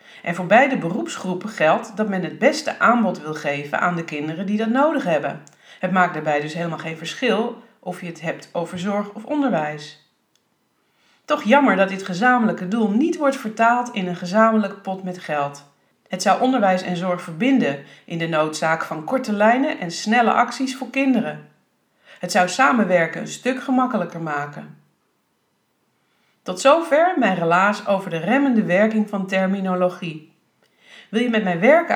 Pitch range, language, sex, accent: 170-240 Hz, Dutch, female, Dutch